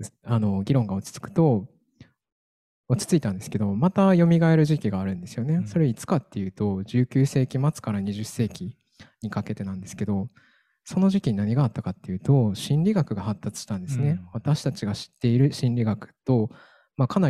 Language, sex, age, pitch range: Japanese, male, 20-39, 105-145 Hz